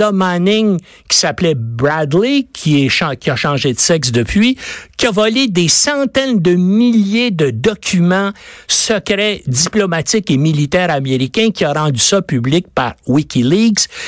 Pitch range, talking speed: 160-225 Hz, 135 wpm